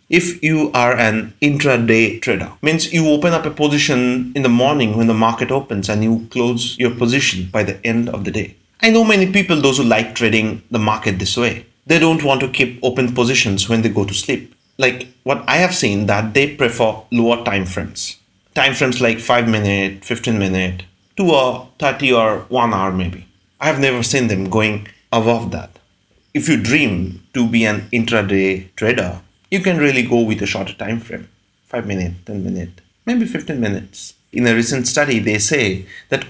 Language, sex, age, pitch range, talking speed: English, male, 30-49, 100-135 Hz, 195 wpm